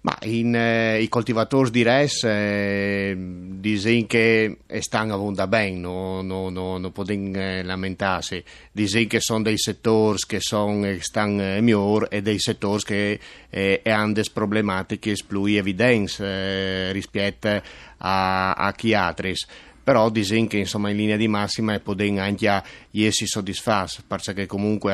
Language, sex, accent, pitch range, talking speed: Italian, male, native, 100-110 Hz, 145 wpm